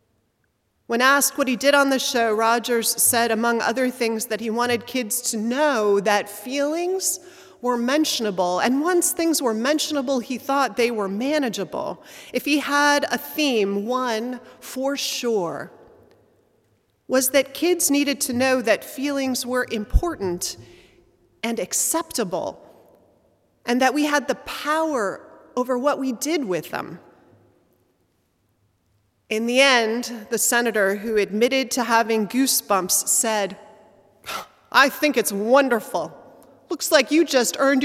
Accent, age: American, 30-49